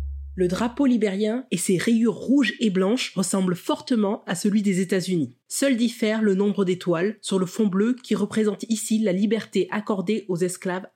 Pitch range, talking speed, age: 185-230 Hz, 175 wpm, 20-39